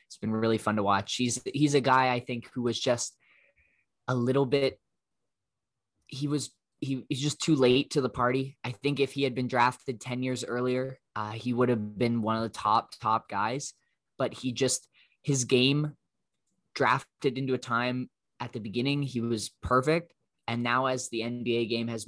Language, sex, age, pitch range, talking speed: English, male, 20-39, 110-125 Hz, 195 wpm